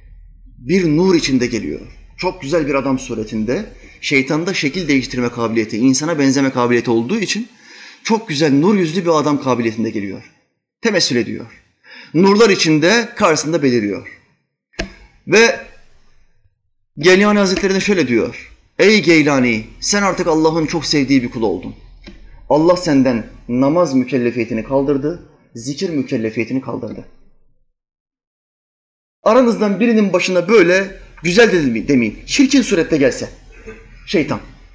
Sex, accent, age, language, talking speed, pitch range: male, native, 30-49, Turkish, 115 wpm, 135-210 Hz